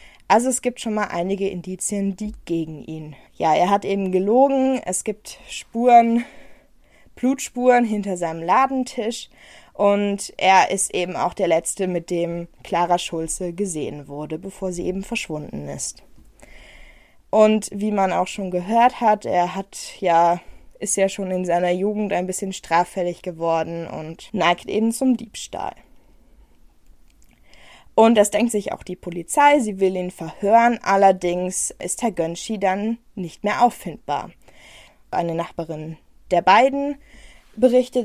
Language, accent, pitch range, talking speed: German, German, 180-230 Hz, 140 wpm